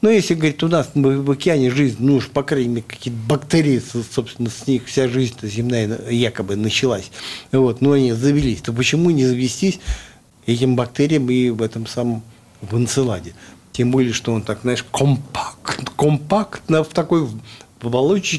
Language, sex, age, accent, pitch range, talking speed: Russian, male, 50-69, native, 115-155 Hz, 165 wpm